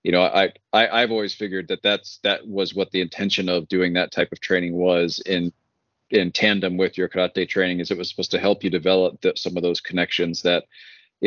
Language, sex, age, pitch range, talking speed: English, male, 30-49, 90-105 Hz, 225 wpm